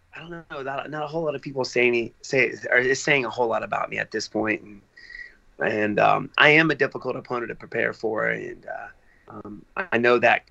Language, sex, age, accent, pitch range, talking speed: English, male, 30-49, American, 125-150 Hz, 225 wpm